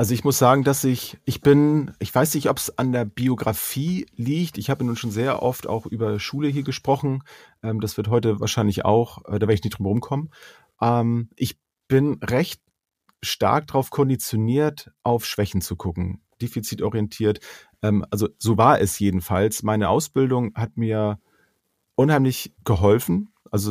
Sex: male